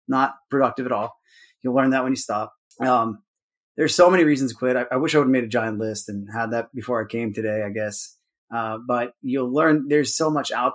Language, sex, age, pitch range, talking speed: English, male, 30-49, 115-135 Hz, 245 wpm